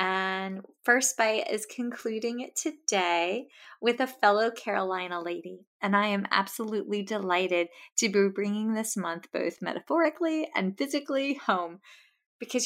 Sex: female